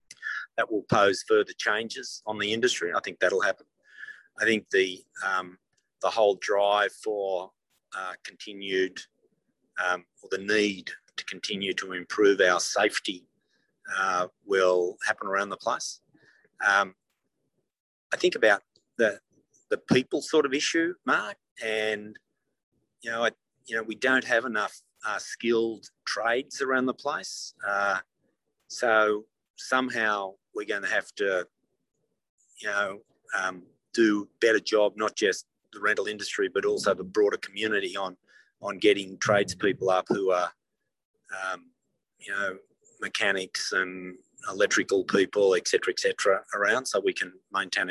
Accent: Australian